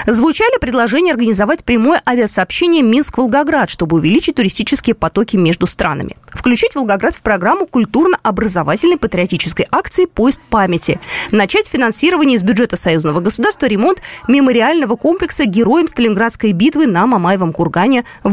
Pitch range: 190-295 Hz